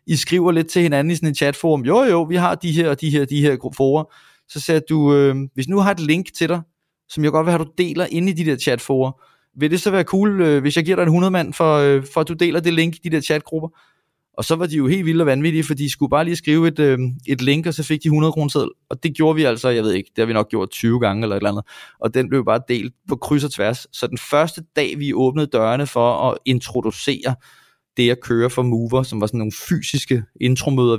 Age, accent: 20-39, Danish